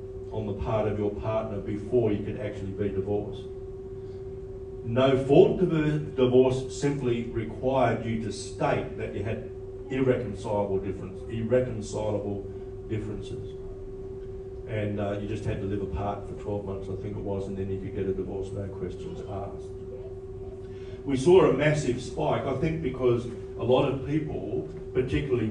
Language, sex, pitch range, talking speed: English, male, 95-125 Hz, 160 wpm